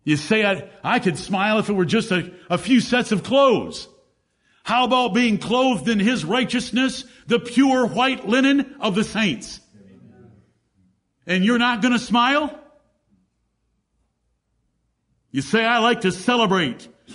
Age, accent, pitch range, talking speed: 50-69, American, 180-250 Hz, 145 wpm